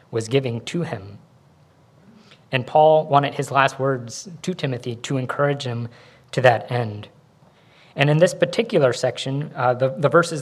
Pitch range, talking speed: 125-150 Hz, 155 wpm